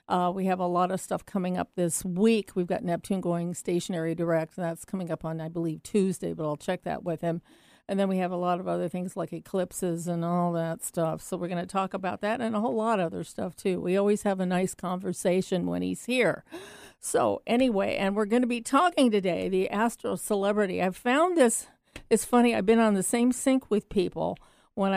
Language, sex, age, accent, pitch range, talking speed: English, female, 50-69, American, 175-205 Hz, 230 wpm